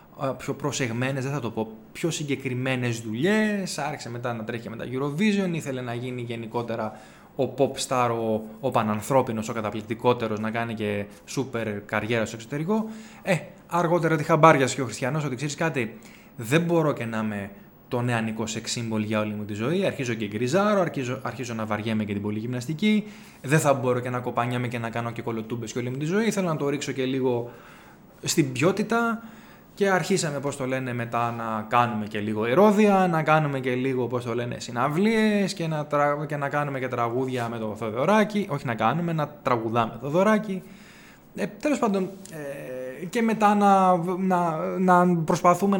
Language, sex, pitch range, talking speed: Greek, male, 115-170 Hz, 175 wpm